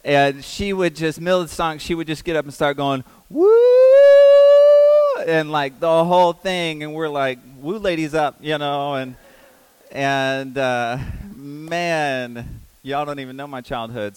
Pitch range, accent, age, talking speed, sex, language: 115-155 Hz, American, 30-49, 165 wpm, male, English